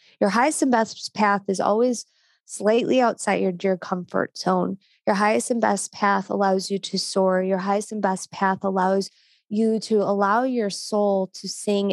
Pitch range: 195-235 Hz